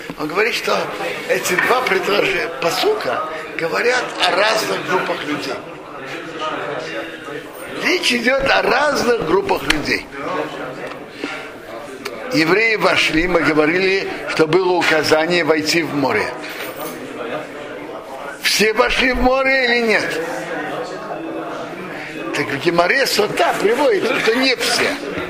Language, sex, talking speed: Russian, male, 100 wpm